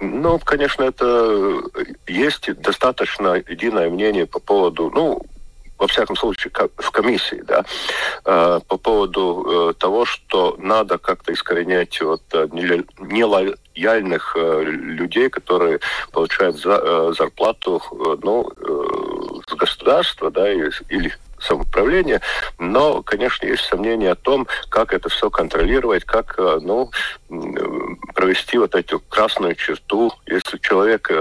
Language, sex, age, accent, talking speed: Russian, male, 50-69, native, 105 wpm